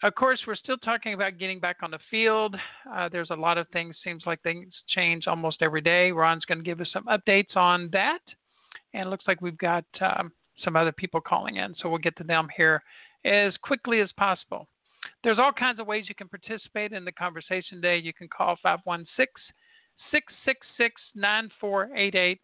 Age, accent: 50-69, American